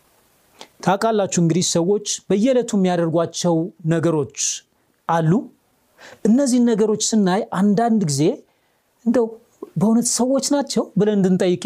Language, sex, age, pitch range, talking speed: Amharic, male, 40-59, 160-235 Hz, 95 wpm